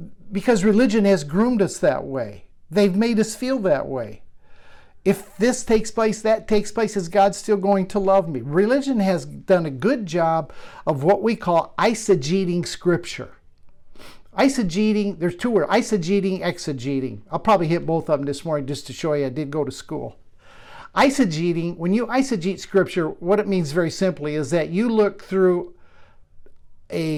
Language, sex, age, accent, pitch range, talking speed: English, male, 50-69, American, 165-215 Hz, 170 wpm